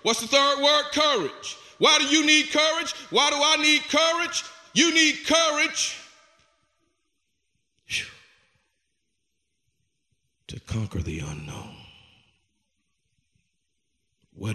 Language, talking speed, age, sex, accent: English, 95 wpm, 50-69, male, American